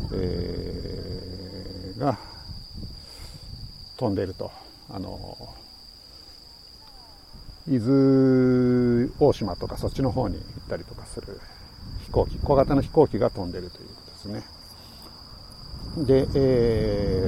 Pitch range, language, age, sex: 95-130 Hz, Japanese, 50-69, male